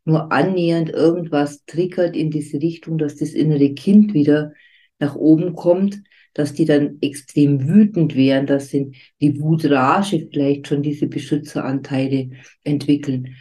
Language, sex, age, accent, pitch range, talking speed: German, female, 50-69, German, 140-165 Hz, 130 wpm